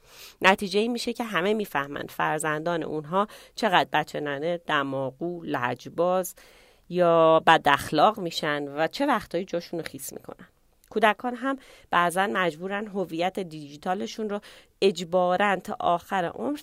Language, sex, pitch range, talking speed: Persian, female, 160-205 Hz, 115 wpm